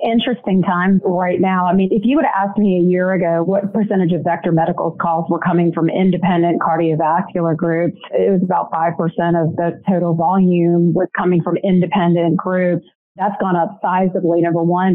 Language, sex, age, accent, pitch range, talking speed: English, female, 40-59, American, 175-200 Hz, 185 wpm